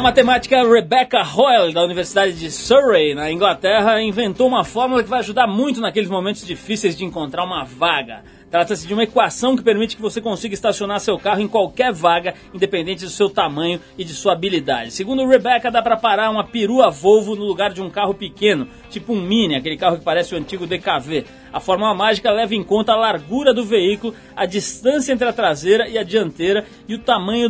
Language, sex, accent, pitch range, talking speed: Portuguese, male, Brazilian, 170-230 Hz, 200 wpm